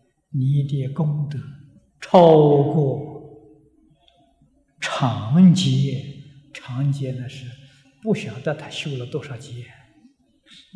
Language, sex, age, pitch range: Chinese, male, 50-69, 135-205 Hz